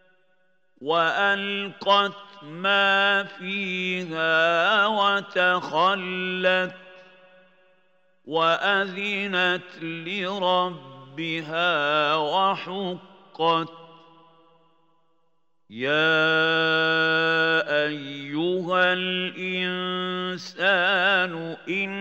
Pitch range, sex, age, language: 175-195 Hz, male, 50-69, Arabic